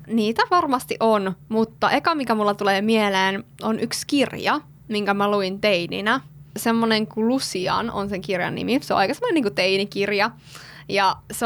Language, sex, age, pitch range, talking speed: Finnish, female, 20-39, 195-235 Hz, 150 wpm